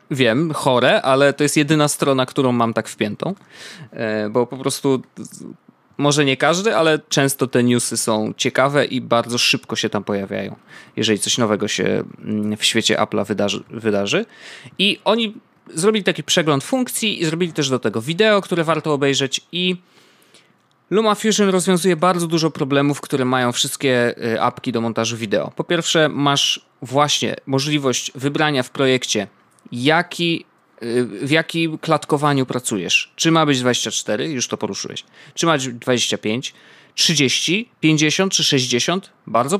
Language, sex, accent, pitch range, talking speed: Polish, male, native, 125-155 Hz, 140 wpm